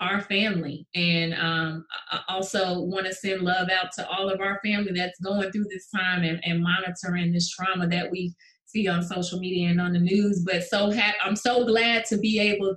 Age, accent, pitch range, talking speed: 20-39, American, 175-200 Hz, 210 wpm